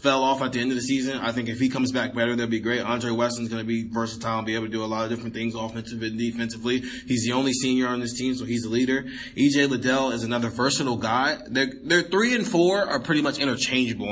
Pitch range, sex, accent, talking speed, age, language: 120-155 Hz, male, American, 270 wpm, 20-39, English